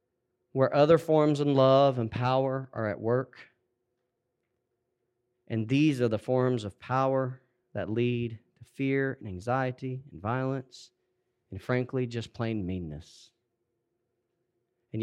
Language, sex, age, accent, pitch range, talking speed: English, male, 40-59, American, 110-125 Hz, 125 wpm